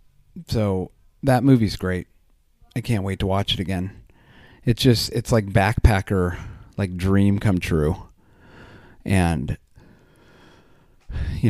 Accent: American